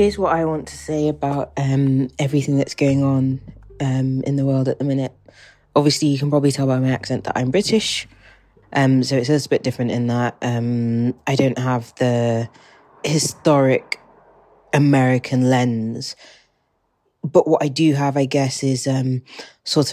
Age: 20-39